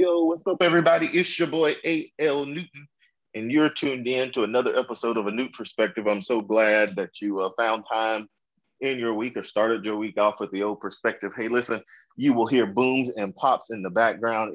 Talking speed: 210 wpm